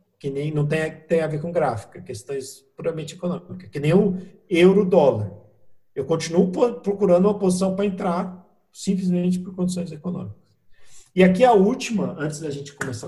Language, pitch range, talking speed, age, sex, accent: English, 140-190 Hz, 165 wpm, 50-69, male, Brazilian